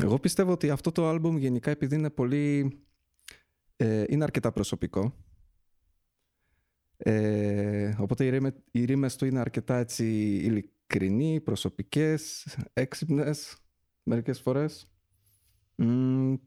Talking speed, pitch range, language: 100 wpm, 95-140 Hz, Greek